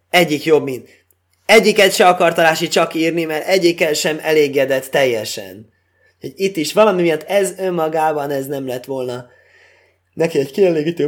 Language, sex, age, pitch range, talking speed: Hungarian, male, 20-39, 140-195 Hz, 145 wpm